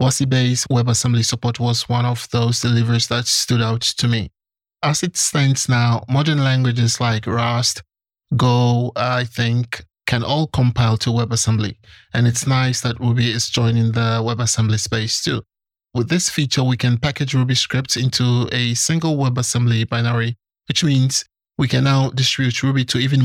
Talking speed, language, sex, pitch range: 160 wpm, English, male, 120-130 Hz